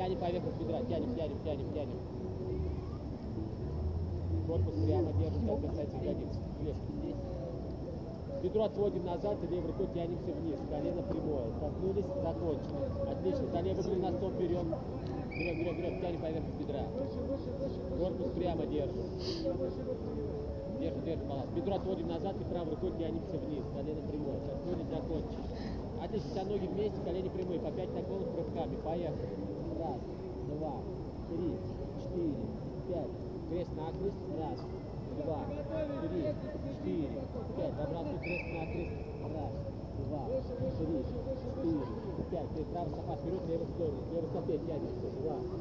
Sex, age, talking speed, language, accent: male, 30-49, 130 wpm, Russian, native